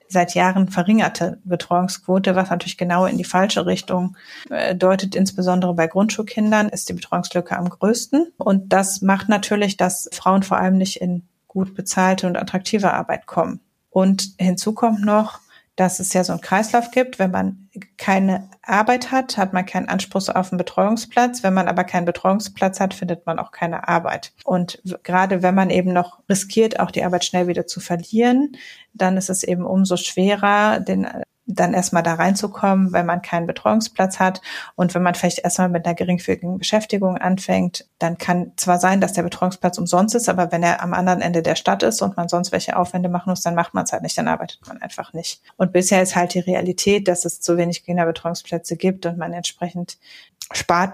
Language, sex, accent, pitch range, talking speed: German, female, German, 175-195 Hz, 190 wpm